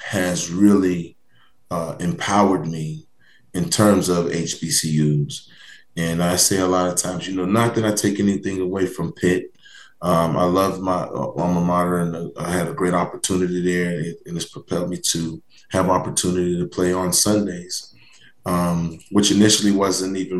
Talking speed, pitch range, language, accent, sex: 160 wpm, 85-95 Hz, English, American, male